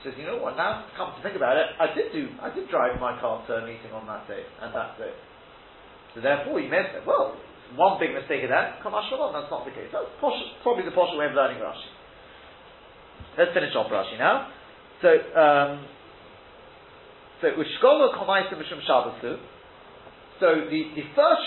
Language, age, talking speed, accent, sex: English, 30-49, 185 wpm, British, male